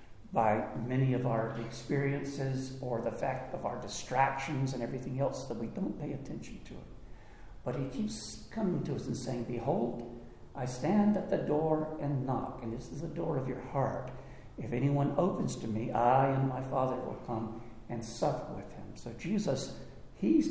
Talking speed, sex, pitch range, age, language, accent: 185 wpm, male, 115-140 Hz, 60-79, English, American